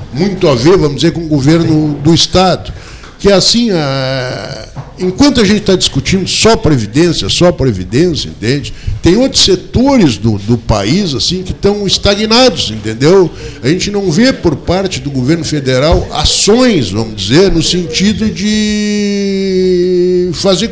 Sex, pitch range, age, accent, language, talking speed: male, 120-190 Hz, 60-79, Brazilian, Portuguese, 150 wpm